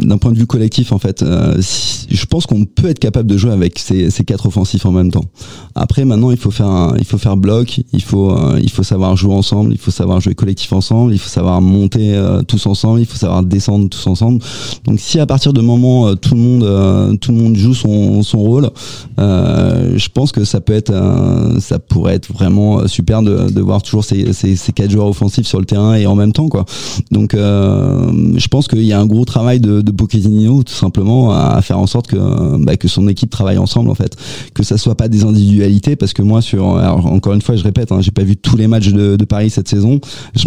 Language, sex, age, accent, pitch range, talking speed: French, male, 30-49, French, 100-120 Hz, 250 wpm